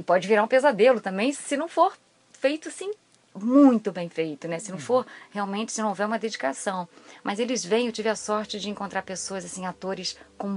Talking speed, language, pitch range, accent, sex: 210 wpm, Portuguese, 180-245 Hz, Brazilian, female